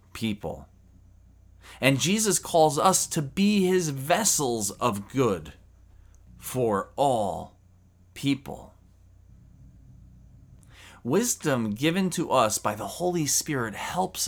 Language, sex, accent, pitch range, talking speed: English, male, American, 90-125 Hz, 95 wpm